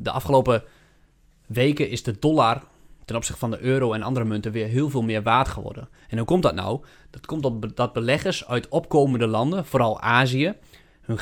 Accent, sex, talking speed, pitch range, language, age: Dutch, male, 195 wpm, 115-140 Hz, Dutch, 20-39